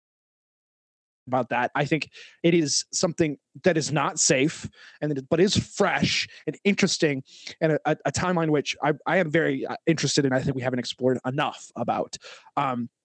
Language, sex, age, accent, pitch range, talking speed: English, male, 20-39, American, 145-190 Hz, 175 wpm